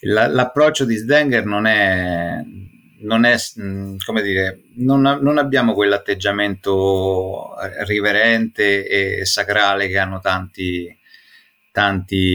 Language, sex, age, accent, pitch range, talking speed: Italian, male, 30-49, native, 100-135 Hz, 100 wpm